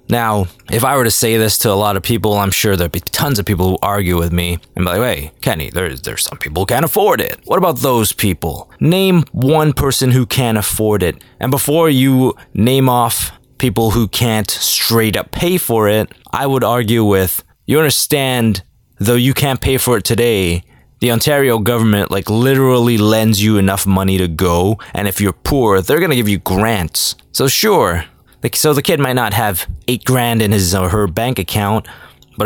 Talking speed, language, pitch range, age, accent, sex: 205 wpm, English, 95-125 Hz, 20-39, American, male